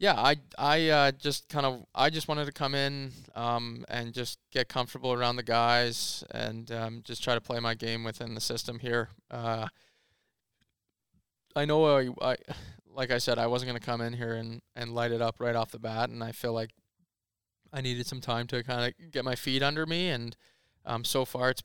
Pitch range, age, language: 115-130 Hz, 20-39, English